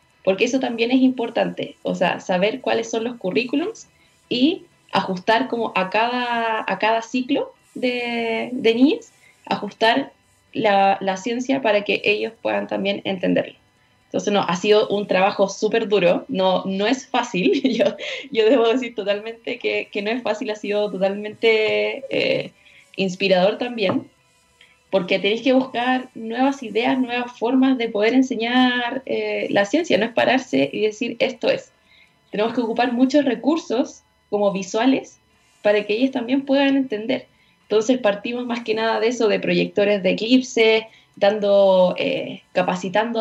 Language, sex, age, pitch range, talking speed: Spanish, female, 20-39, 205-255 Hz, 150 wpm